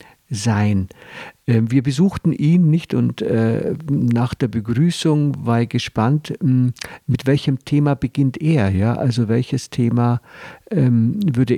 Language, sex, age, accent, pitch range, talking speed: German, male, 50-69, German, 115-140 Hz, 110 wpm